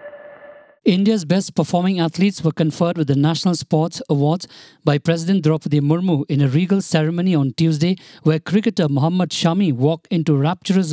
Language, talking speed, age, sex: English, 155 wpm, 50-69, male